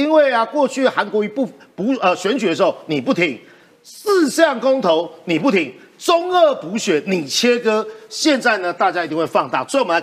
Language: Chinese